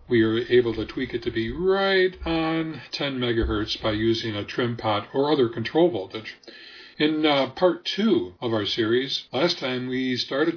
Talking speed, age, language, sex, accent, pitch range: 180 wpm, 50-69, English, male, American, 110-135 Hz